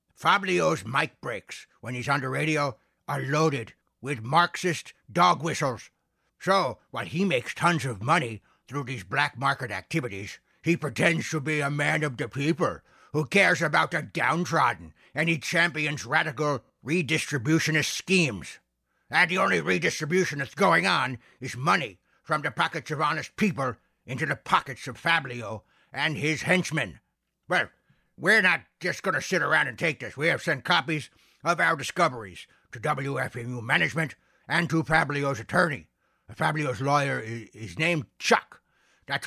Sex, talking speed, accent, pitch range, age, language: male, 155 wpm, American, 125-165 Hz, 60-79, English